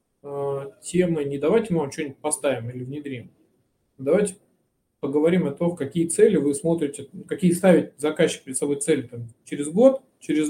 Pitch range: 135-180 Hz